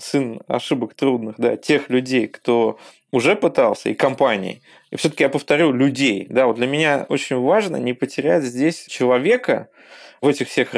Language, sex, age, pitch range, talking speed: Russian, male, 20-39, 125-155 Hz, 160 wpm